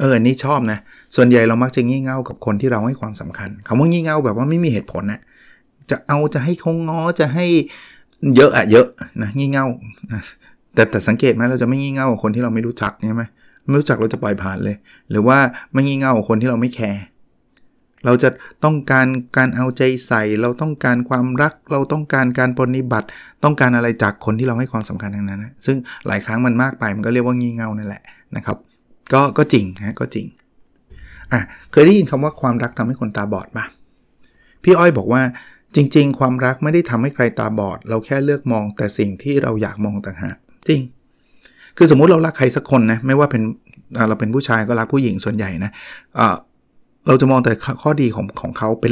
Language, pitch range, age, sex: Thai, 110-140 Hz, 20-39, male